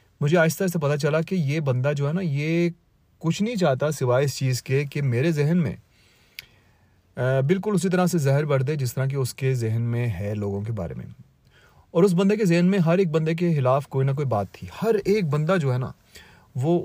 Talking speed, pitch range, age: 230 wpm, 125-160 Hz, 30-49